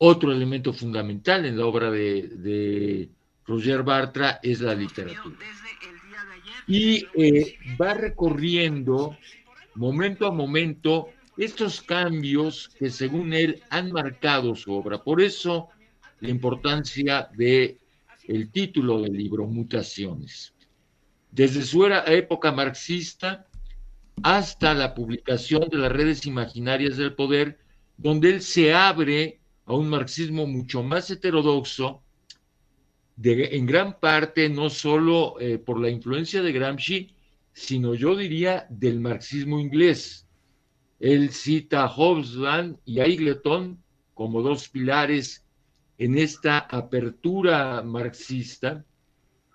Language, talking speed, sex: Spanish, 115 wpm, male